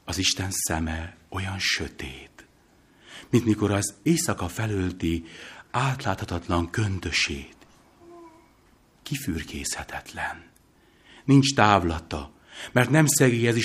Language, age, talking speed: Hungarian, 60-79, 80 wpm